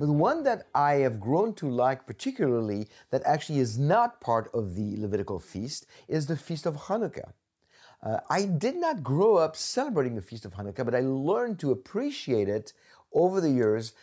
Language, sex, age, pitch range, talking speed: English, male, 50-69, 110-145 Hz, 185 wpm